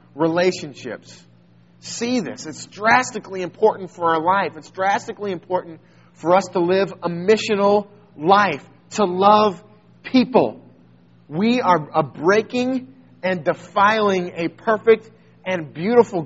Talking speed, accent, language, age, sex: 120 wpm, American, English, 30-49, male